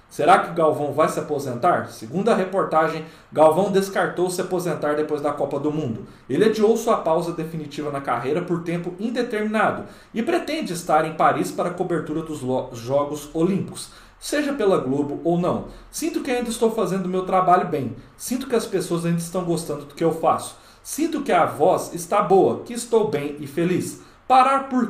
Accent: Brazilian